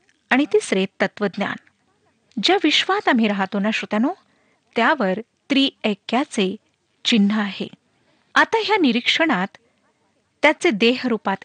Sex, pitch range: female, 205-295 Hz